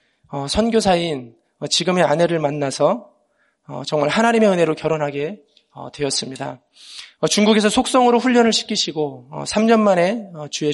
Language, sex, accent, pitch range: Korean, male, native, 150-210 Hz